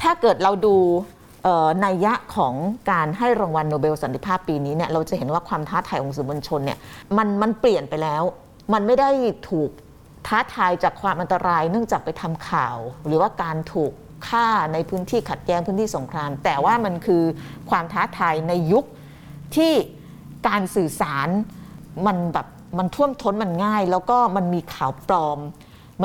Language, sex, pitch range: Thai, female, 155-205 Hz